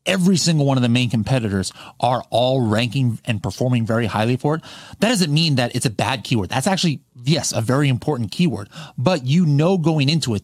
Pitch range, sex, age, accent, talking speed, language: 115-145 Hz, male, 30-49, American, 215 wpm, English